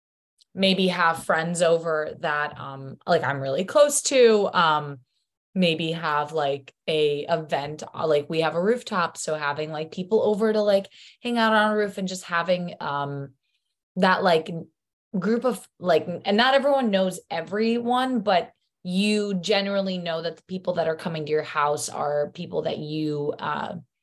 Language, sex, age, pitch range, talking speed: English, female, 20-39, 160-220 Hz, 165 wpm